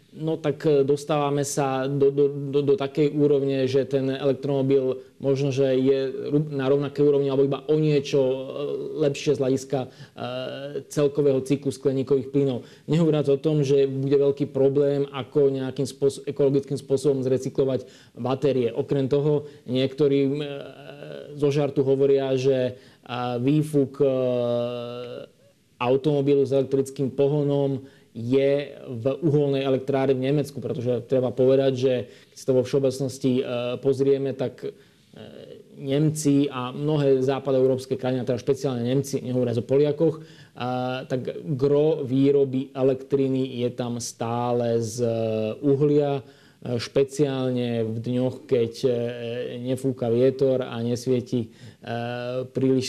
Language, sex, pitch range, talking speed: Slovak, male, 130-140 Hz, 120 wpm